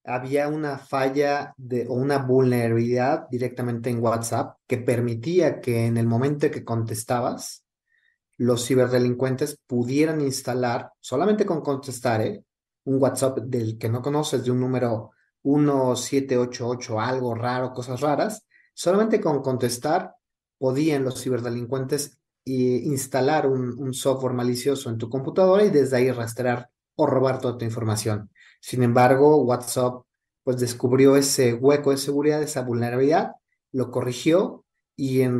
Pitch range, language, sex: 120-145 Hz, Spanish, male